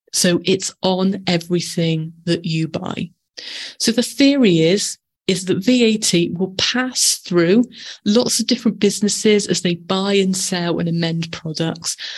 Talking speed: 145 wpm